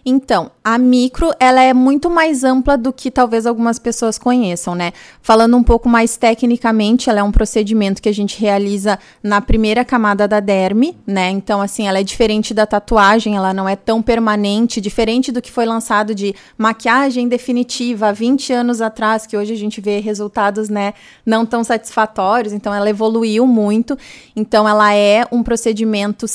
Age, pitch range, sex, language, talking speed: 20-39, 205-245 Hz, female, Portuguese, 175 wpm